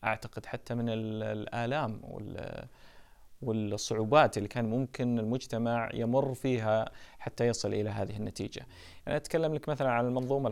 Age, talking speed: 30-49, 125 wpm